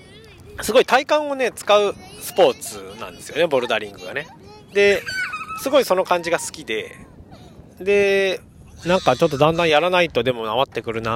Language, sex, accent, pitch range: Japanese, male, native, 115-190 Hz